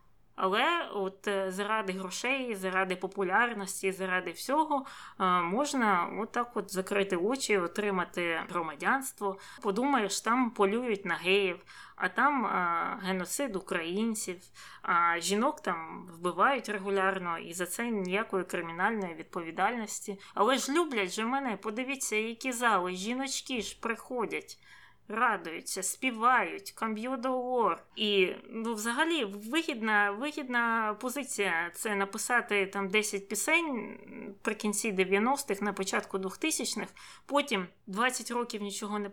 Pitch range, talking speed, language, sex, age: 195-255 Hz, 110 wpm, Ukrainian, female, 20-39